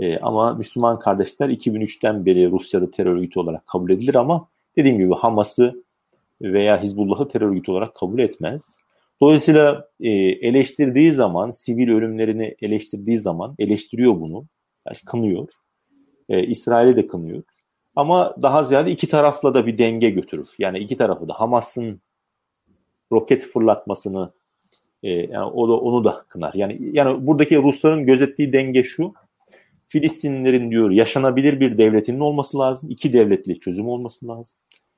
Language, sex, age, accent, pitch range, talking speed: Turkish, male, 40-59, native, 110-150 Hz, 130 wpm